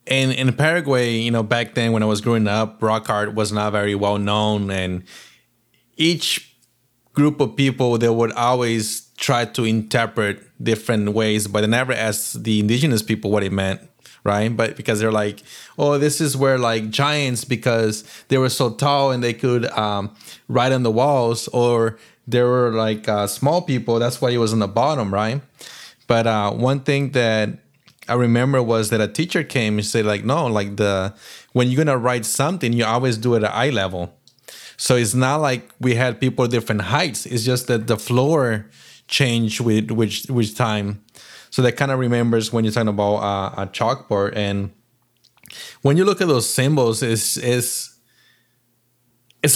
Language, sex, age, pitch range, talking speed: English, male, 20-39, 110-125 Hz, 185 wpm